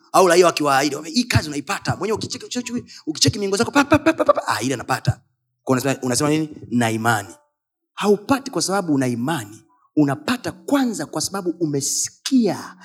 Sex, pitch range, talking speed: male, 195-290 Hz, 130 wpm